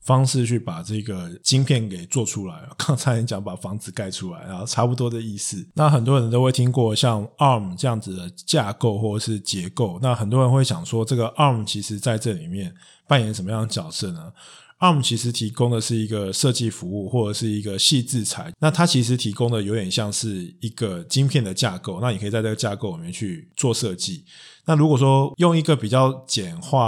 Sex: male